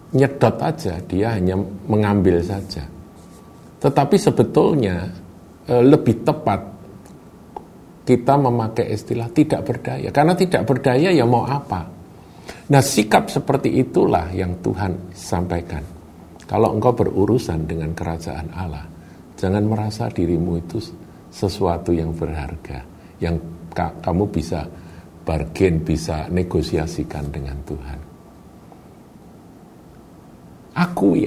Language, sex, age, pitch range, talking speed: Indonesian, male, 50-69, 80-110 Hz, 95 wpm